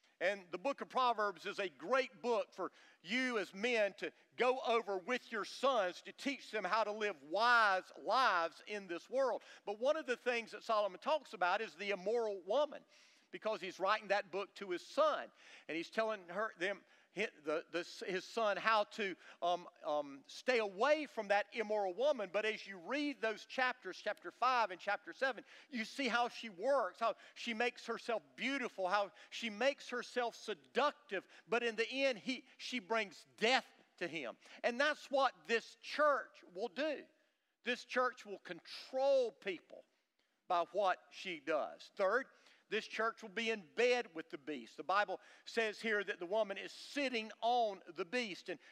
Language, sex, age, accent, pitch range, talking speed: English, male, 50-69, American, 200-260 Hz, 175 wpm